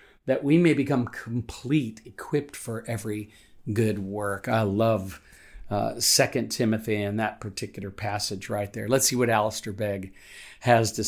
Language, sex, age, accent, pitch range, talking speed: English, male, 50-69, American, 110-140 Hz, 150 wpm